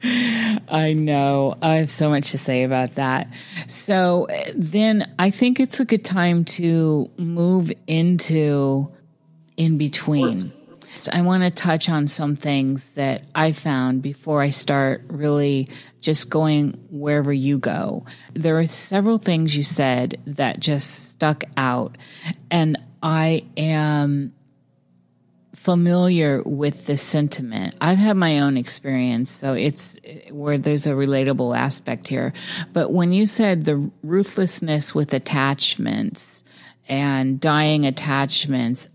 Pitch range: 140-170 Hz